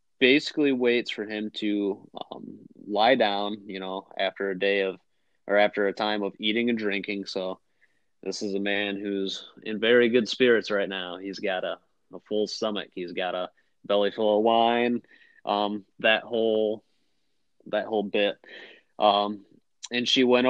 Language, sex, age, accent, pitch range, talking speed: English, male, 20-39, American, 100-120 Hz, 165 wpm